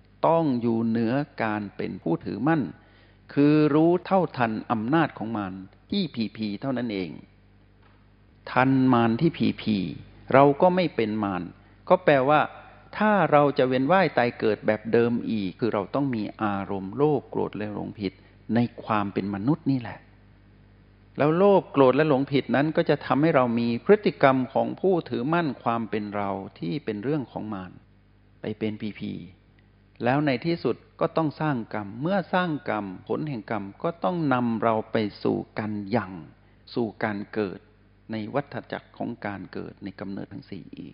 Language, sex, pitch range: Thai, male, 100-140 Hz